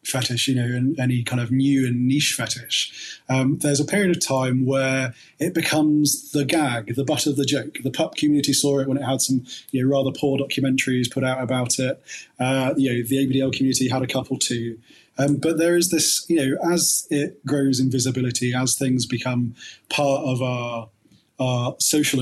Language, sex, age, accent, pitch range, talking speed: English, male, 20-39, British, 130-145 Hz, 200 wpm